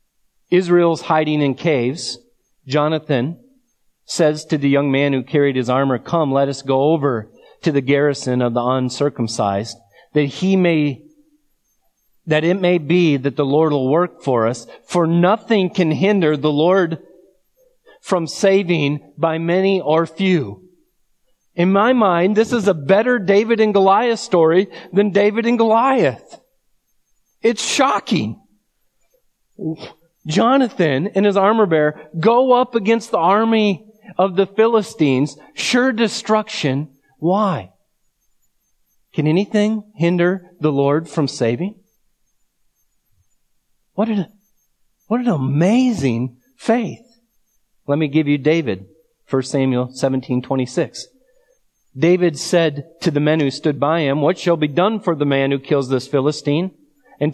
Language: English